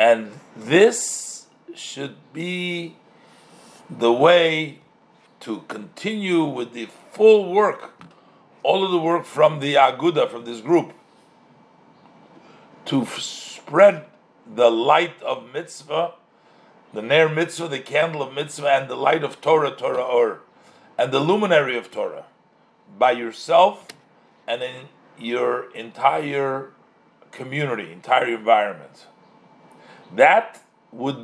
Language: English